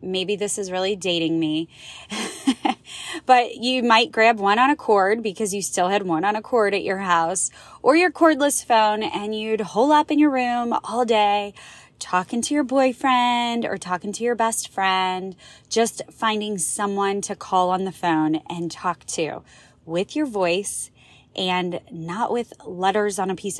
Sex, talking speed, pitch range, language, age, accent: female, 175 wpm, 185-235 Hz, English, 20-39, American